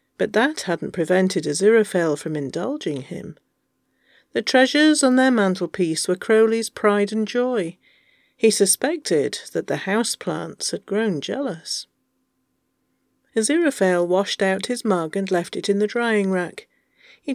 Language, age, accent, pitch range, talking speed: English, 40-59, British, 185-240 Hz, 140 wpm